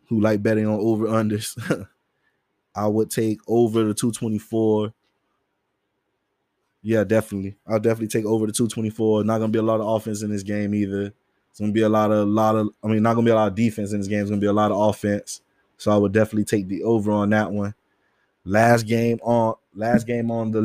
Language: English